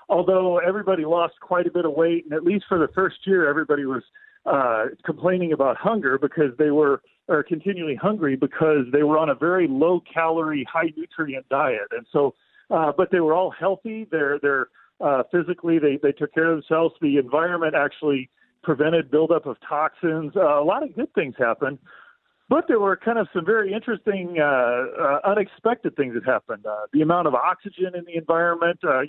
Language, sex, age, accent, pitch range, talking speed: English, male, 40-59, American, 145-185 Hz, 190 wpm